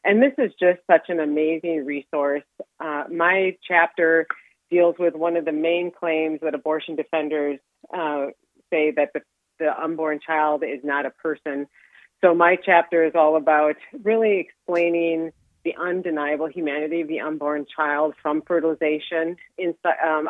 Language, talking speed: English, 150 wpm